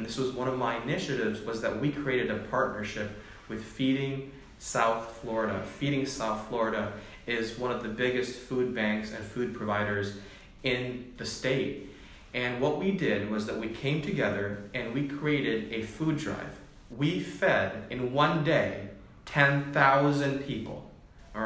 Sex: male